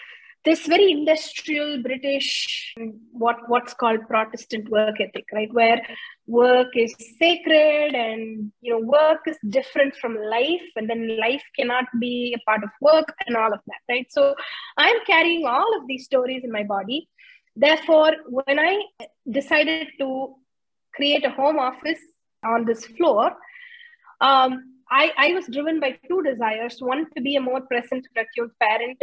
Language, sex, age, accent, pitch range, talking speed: English, female, 20-39, Indian, 235-315 Hz, 155 wpm